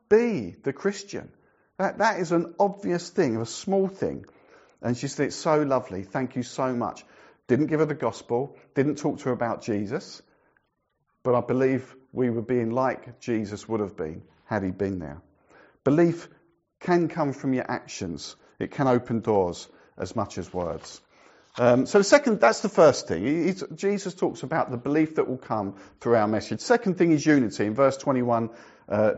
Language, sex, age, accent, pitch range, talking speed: English, male, 50-69, British, 105-140 Hz, 185 wpm